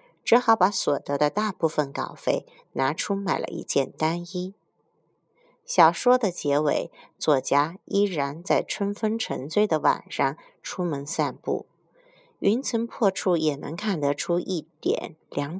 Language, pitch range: Chinese, 155-225 Hz